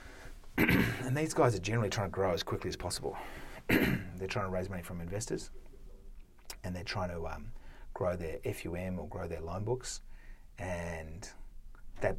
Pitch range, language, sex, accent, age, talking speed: 85-100 Hz, English, male, Australian, 30-49, 165 wpm